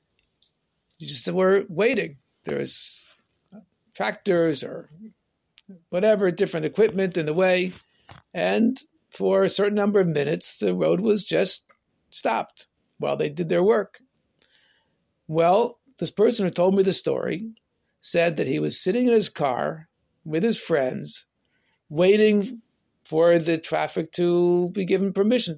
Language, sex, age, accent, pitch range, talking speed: English, male, 60-79, American, 170-230 Hz, 135 wpm